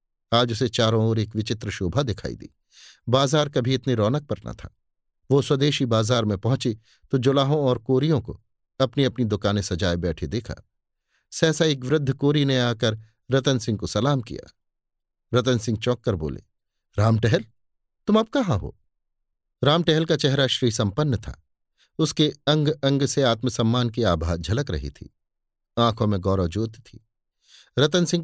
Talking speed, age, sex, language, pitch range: 160 wpm, 50-69, male, Hindi, 105-135 Hz